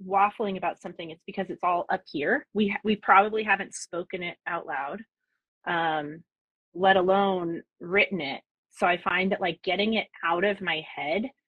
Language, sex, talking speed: English, female, 175 wpm